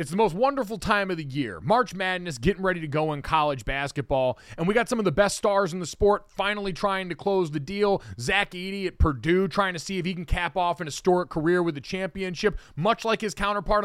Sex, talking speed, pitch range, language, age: male, 245 wpm, 155-205 Hz, English, 30-49